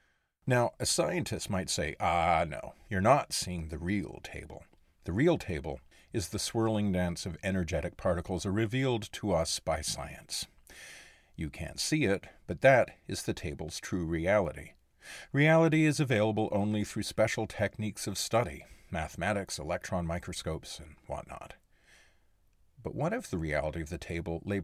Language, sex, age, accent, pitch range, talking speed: English, male, 50-69, American, 75-105 Hz, 150 wpm